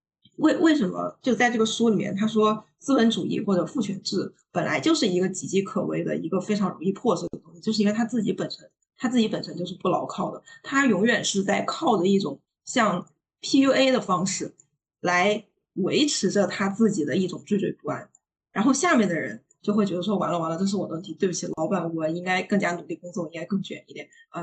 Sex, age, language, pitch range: female, 20-39, Chinese, 170-210 Hz